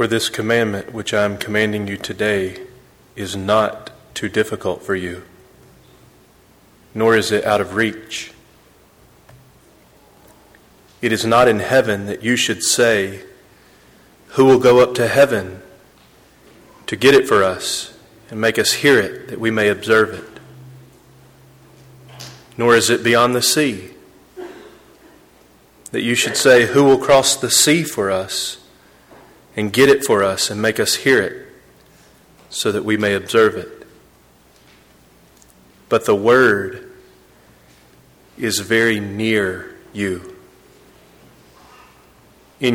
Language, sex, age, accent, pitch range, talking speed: English, male, 30-49, American, 70-115 Hz, 130 wpm